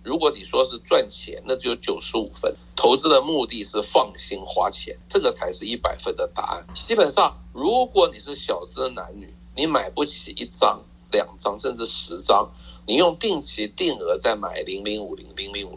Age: 50-69